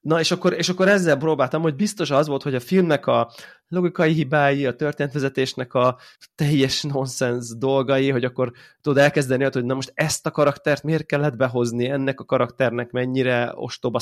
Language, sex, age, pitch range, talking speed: Hungarian, male, 20-39, 120-150 Hz, 175 wpm